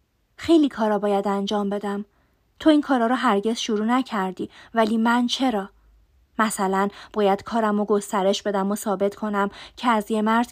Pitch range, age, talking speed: 205-245 Hz, 20-39, 160 wpm